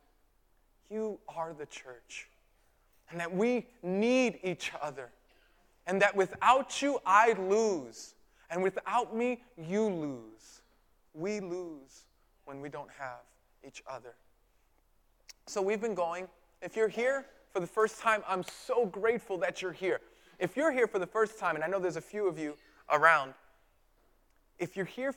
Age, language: 20-39, English